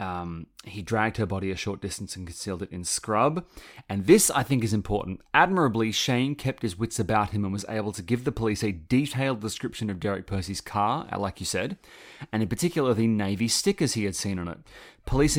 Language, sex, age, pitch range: English, male, 30-49, 100-125 Hz